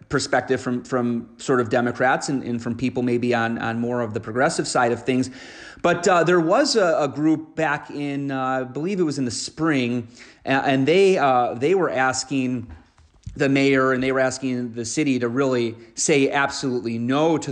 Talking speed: 200 wpm